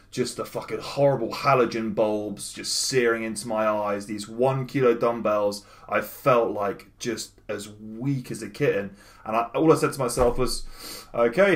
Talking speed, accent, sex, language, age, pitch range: 170 wpm, British, male, English, 20-39, 105-135 Hz